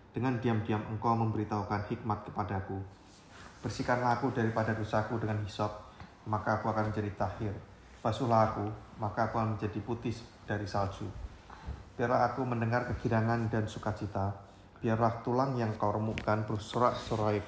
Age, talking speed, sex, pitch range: 20-39, 130 wpm, male, 100-110 Hz